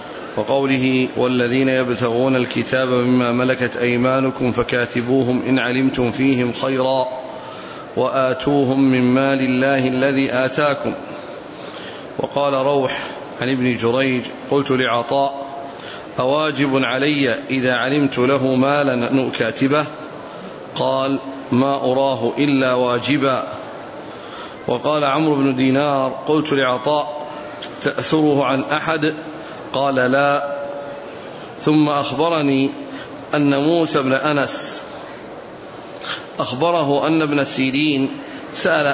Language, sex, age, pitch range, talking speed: Arabic, male, 40-59, 130-145 Hz, 90 wpm